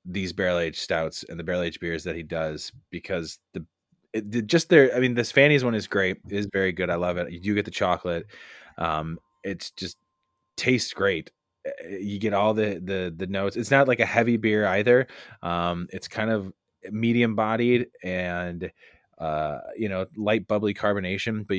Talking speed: 190 wpm